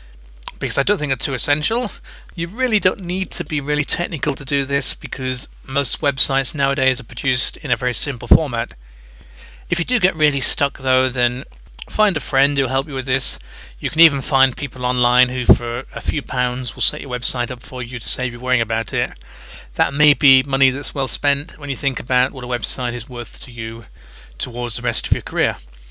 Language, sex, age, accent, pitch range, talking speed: English, male, 40-59, British, 125-150 Hz, 215 wpm